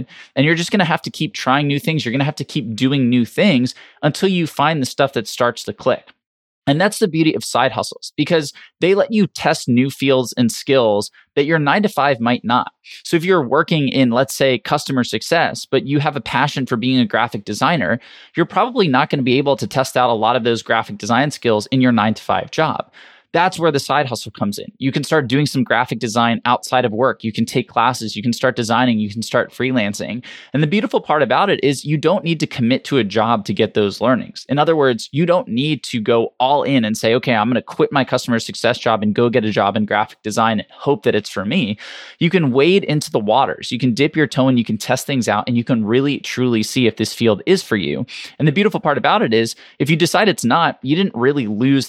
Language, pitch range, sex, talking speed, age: English, 115-150 Hz, male, 255 wpm, 20-39